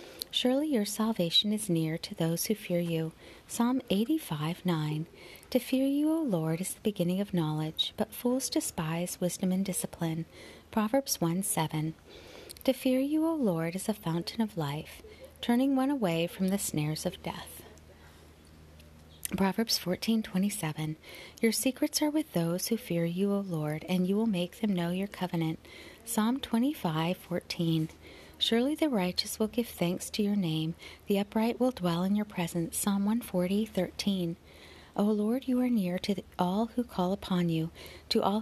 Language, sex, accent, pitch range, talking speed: English, female, American, 170-225 Hz, 175 wpm